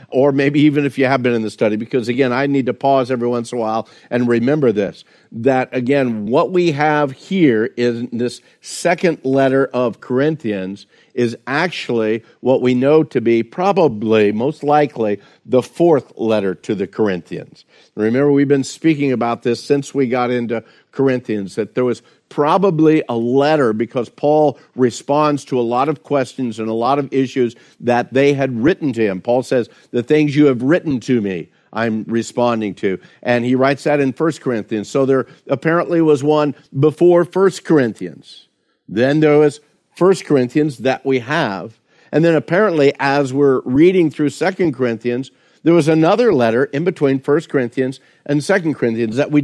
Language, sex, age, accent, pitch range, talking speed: English, male, 50-69, American, 120-150 Hz, 175 wpm